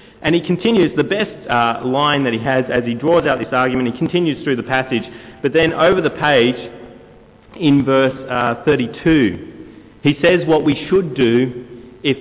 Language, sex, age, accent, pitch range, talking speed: English, male, 30-49, Australian, 130-180 Hz, 180 wpm